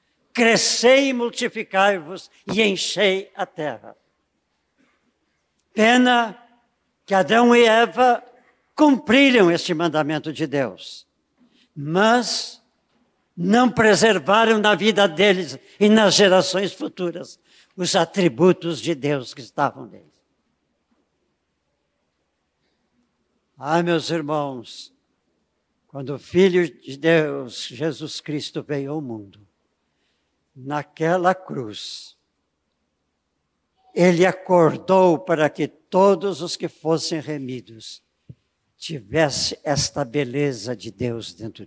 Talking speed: 95 wpm